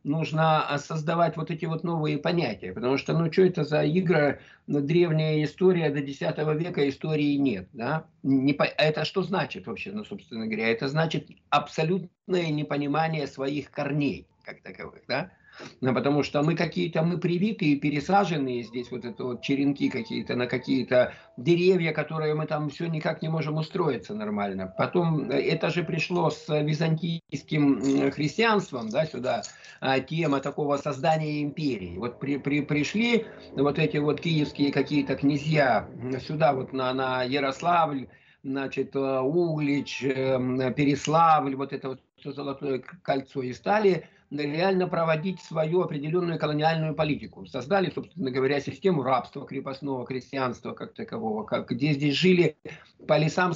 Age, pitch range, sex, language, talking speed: 50-69, 140-170 Hz, male, Russian, 135 wpm